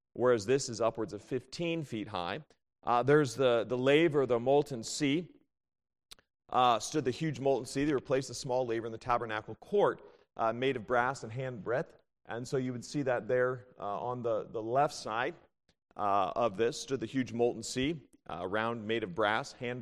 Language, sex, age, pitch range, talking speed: English, male, 40-59, 115-140 Hz, 195 wpm